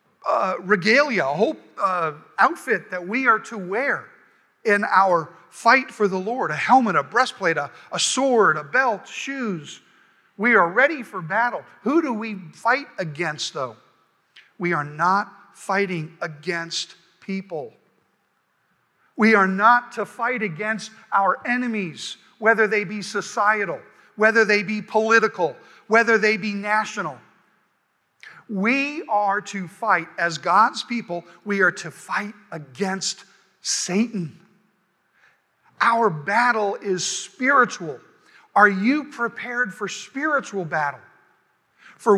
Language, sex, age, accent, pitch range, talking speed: English, male, 50-69, American, 190-230 Hz, 125 wpm